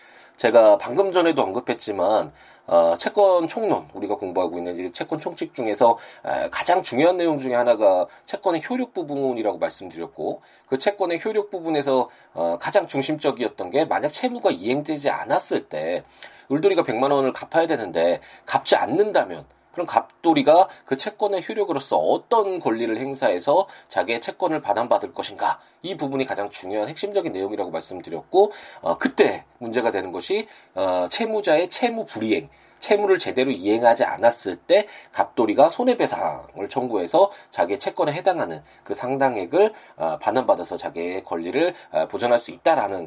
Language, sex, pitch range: Korean, male, 130-200 Hz